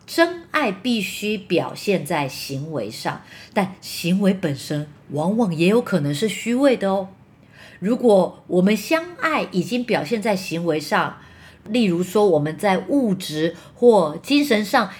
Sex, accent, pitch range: female, American, 165-235 Hz